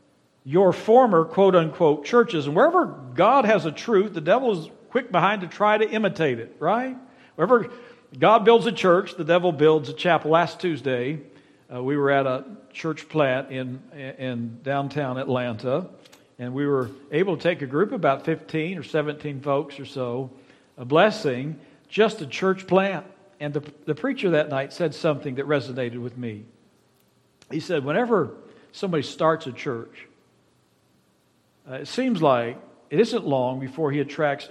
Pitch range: 140-205 Hz